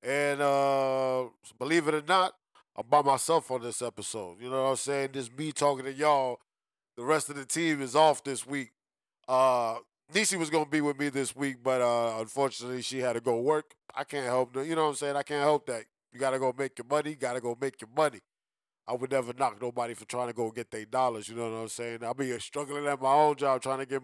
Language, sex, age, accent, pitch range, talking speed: English, male, 20-39, American, 125-155 Hz, 260 wpm